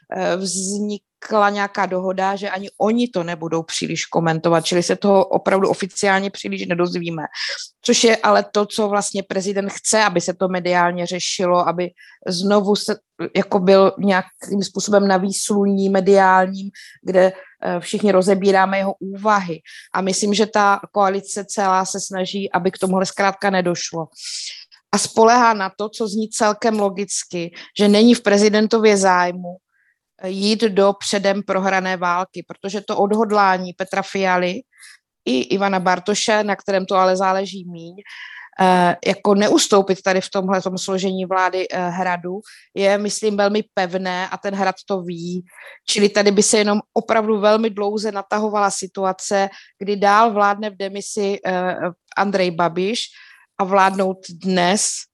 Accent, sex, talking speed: native, female, 135 wpm